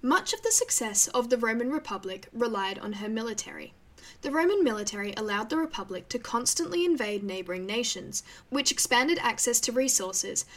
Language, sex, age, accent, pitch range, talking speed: English, female, 10-29, Australian, 210-290 Hz, 160 wpm